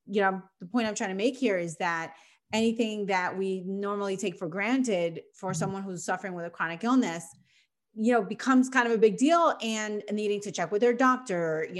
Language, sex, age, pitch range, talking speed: English, female, 30-49, 185-225 Hz, 215 wpm